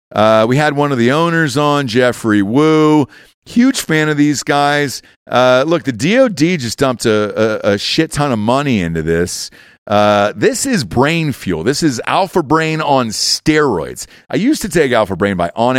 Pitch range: 120-170 Hz